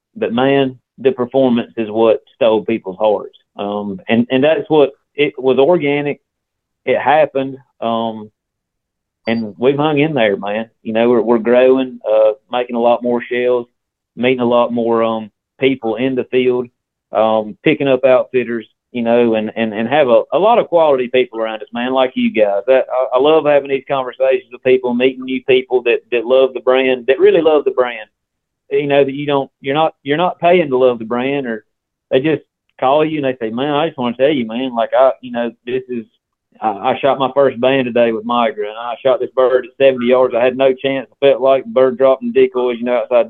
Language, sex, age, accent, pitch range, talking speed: English, male, 40-59, American, 115-135 Hz, 215 wpm